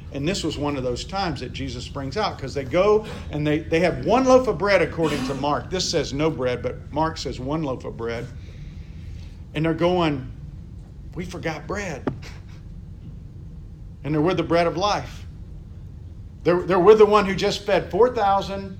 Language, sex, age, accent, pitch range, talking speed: English, male, 50-69, American, 110-175 Hz, 185 wpm